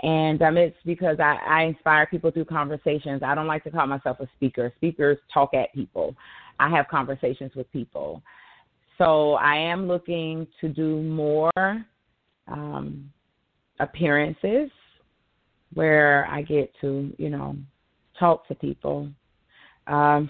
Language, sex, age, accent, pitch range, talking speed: English, female, 30-49, American, 150-170 Hz, 135 wpm